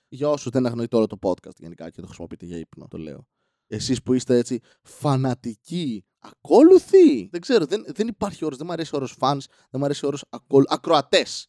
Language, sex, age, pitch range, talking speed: Greek, male, 20-39, 120-175 Hz, 195 wpm